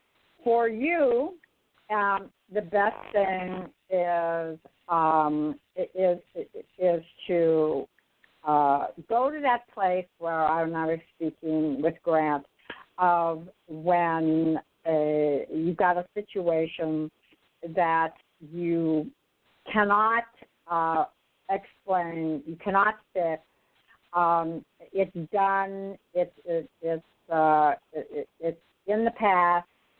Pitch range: 165-215 Hz